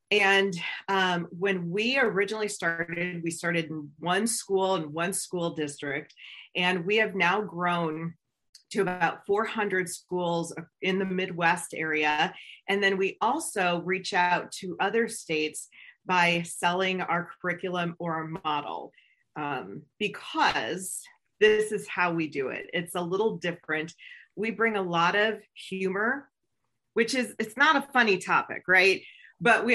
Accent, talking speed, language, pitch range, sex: American, 145 wpm, English, 170-210 Hz, female